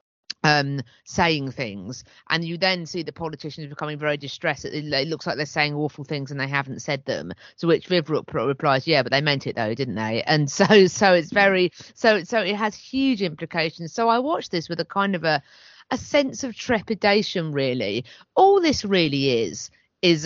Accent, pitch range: British, 135-190 Hz